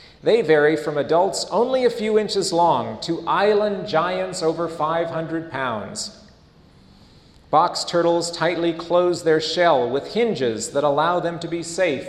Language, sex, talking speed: English, male, 145 wpm